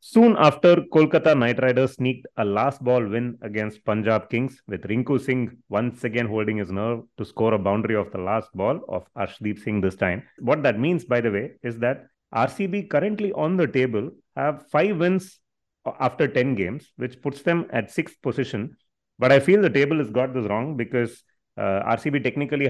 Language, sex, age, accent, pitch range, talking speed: English, male, 30-49, Indian, 110-140 Hz, 190 wpm